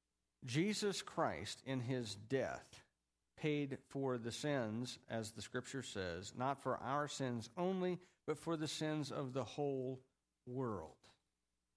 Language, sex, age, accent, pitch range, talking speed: English, male, 50-69, American, 100-145 Hz, 135 wpm